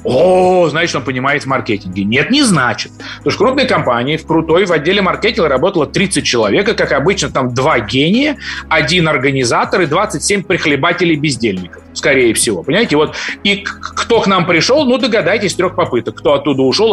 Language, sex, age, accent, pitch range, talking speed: Russian, male, 30-49, native, 140-195 Hz, 165 wpm